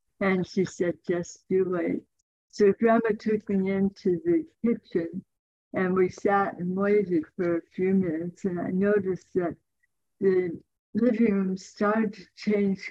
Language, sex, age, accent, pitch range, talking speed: English, female, 60-79, American, 175-205 Hz, 150 wpm